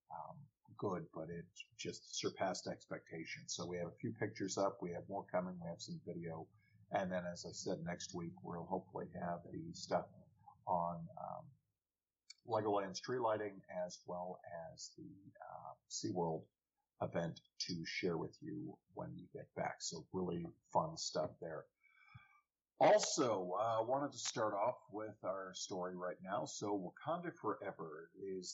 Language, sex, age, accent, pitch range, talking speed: English, male, 50-69, American, 90-115 Hz, 155 wpm